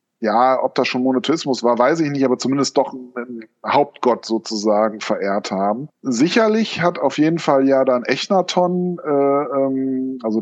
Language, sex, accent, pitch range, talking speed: German, male, German, 120-145 Hz, 160 wpm